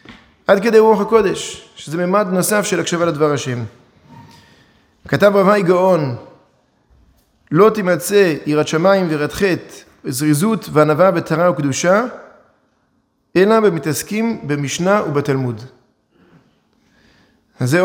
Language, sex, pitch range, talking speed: Hebrew, male, 150-195 Hz, 100 wpm